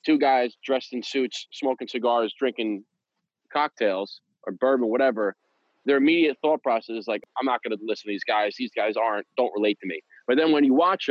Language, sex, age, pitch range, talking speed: English, male, 30-49, 110-145 Hz, 205 wpm